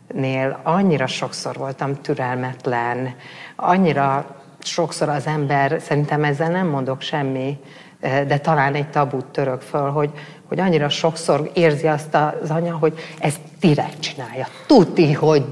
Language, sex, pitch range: Hungarian, female, 140-165 Hz